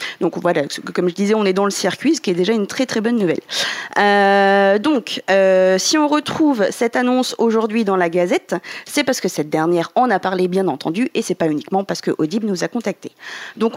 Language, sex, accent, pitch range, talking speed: French, female, French, 185-260 Hz, 230 wpm